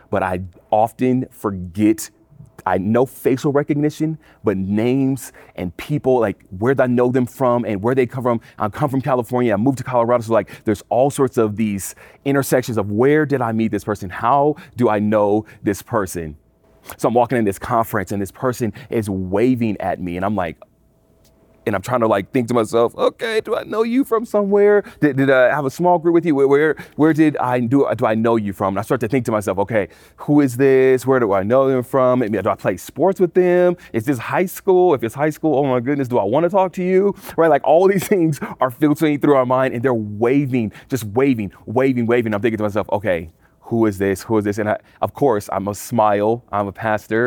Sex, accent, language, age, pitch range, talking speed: male, American, English, 30-49, 110-140 Hz, 230 wpm